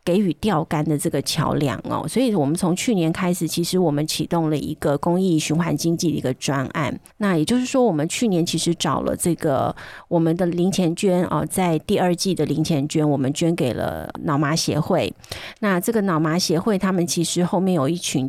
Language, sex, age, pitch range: Chinese, female, 30-49, 155-190 Hz